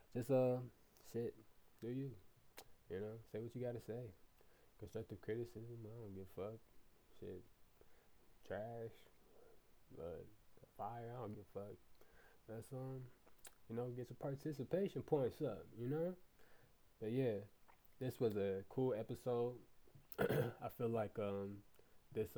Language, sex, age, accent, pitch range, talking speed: English, male, 20-39, American, 95-115 Hz, 140 wpm